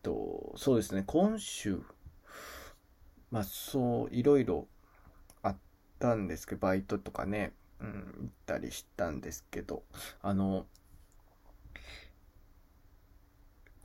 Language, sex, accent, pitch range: Japanese, male, native, 95-120 Hz